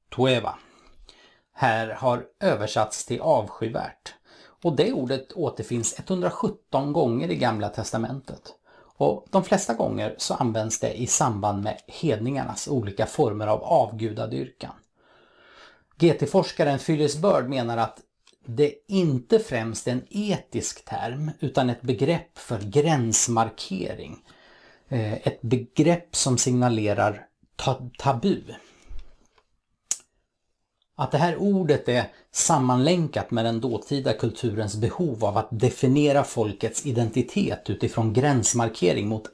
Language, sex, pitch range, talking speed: Swedish, male, 115-145 Hz, 110 wpm